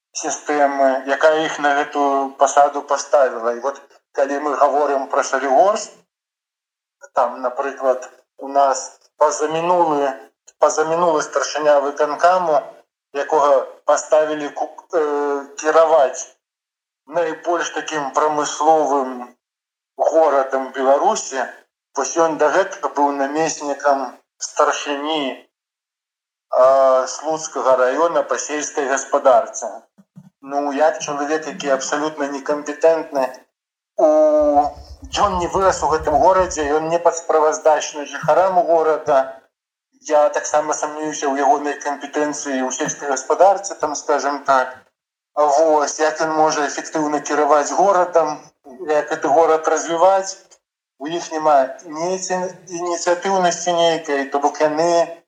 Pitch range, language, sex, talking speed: 140-160 Hz, Russian, male, 95 wpm